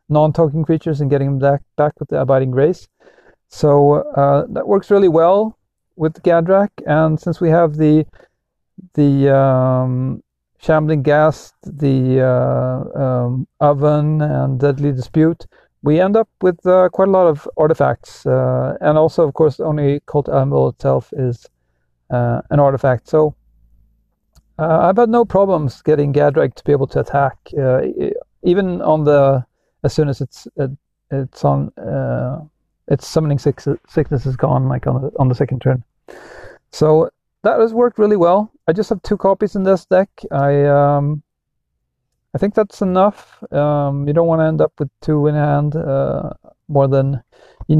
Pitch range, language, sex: 140-180 Hz, English, male